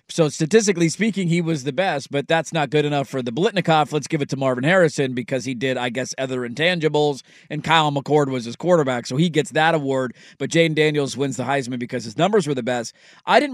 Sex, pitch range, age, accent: male, 145-180 Hz, 30-49, American